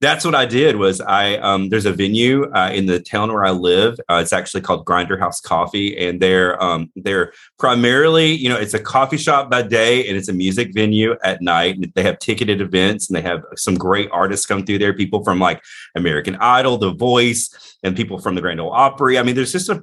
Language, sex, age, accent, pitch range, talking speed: English, male, 30-49, American, 95-125 Hz, 230 wpm